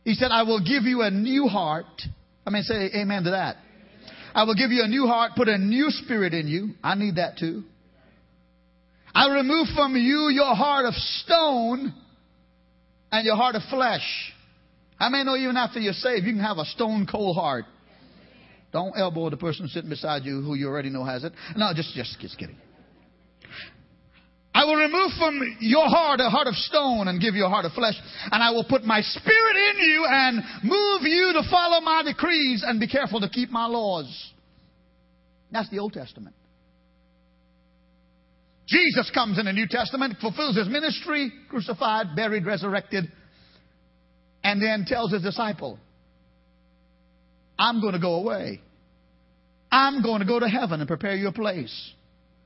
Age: 40-59